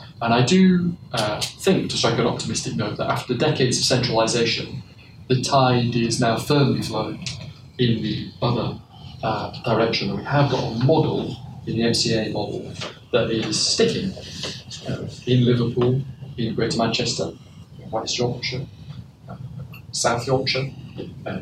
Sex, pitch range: male, 115-135 Hz